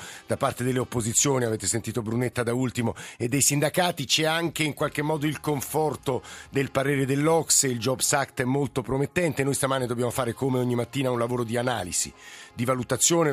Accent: native